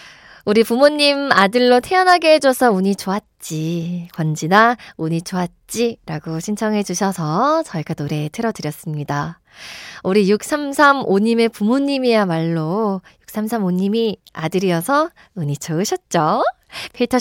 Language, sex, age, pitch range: Korean, female, 20-39, 190-265 Hz